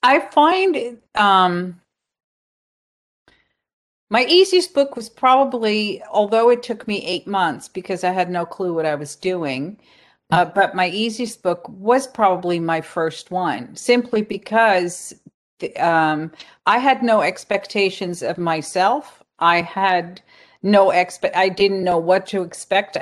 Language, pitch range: English, 180-235 Hz